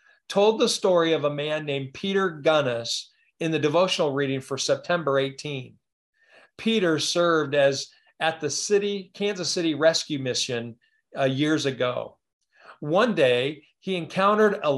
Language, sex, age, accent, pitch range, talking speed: English, male, 40-59, American, 140-190 Hz, 140 wpm